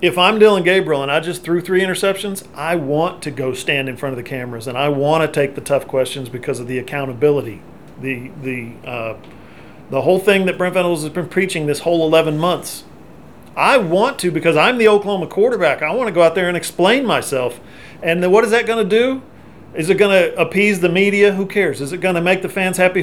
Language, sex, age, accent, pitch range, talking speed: English, male, 40-59, American, 155-200 Hz, 225 wpm